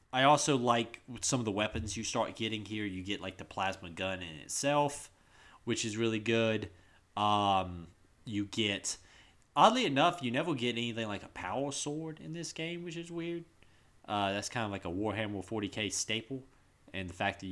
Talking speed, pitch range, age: 190 wpm, 95-130 Hz, 30-49